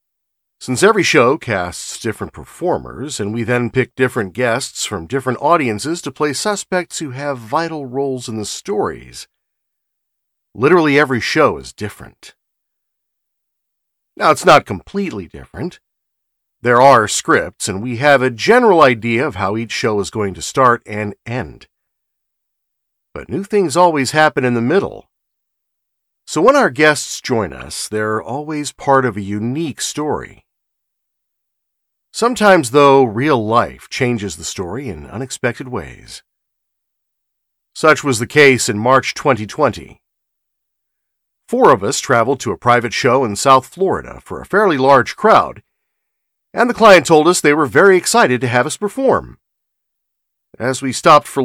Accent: American